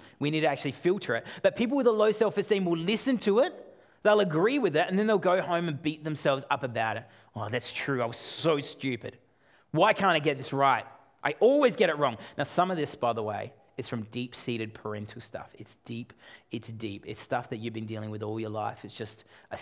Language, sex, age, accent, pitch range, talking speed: English, male, 30-49, Australian, 115-150 Hz, 240 wpm